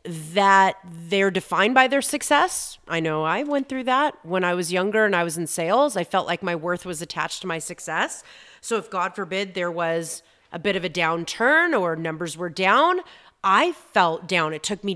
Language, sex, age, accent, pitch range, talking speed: English, female, 30-49, American, 170-220 Hz, 210 wpm